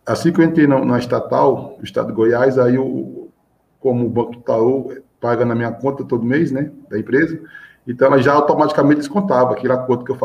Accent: Brazilian